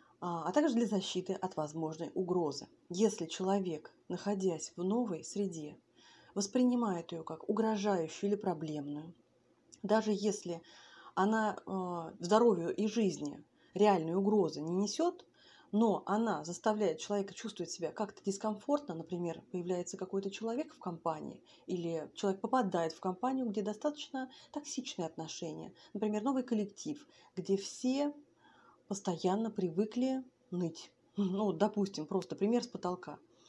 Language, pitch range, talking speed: Russian, 180-240 Hz, 120 wpm